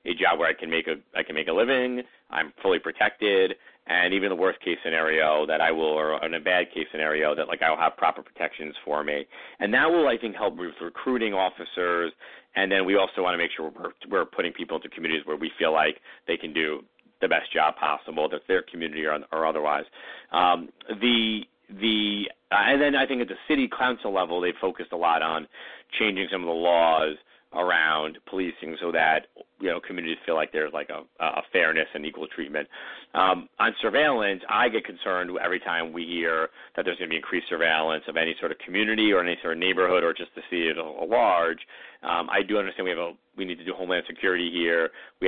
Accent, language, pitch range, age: American, English, 80-95 Hz, 40-59